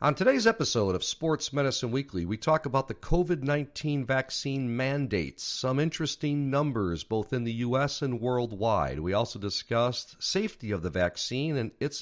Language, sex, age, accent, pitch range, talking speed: English, male, 50-69, American, 95-135 Hz, 160 wpm